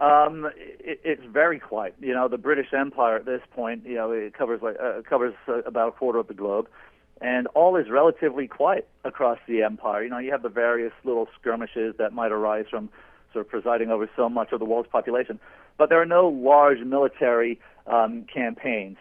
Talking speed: 205 wpm